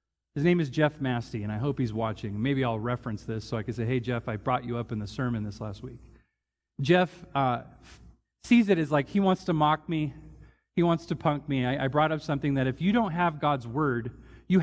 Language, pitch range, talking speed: English, 110-145 Hz, 245 wpm